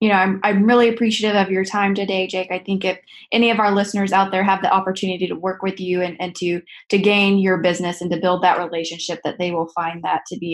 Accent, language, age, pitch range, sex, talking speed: American, English, 20-39, 175-195 Hz, female, 260 wpm